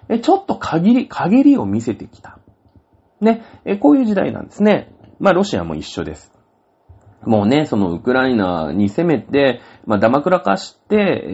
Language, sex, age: Japanese, male, 40-59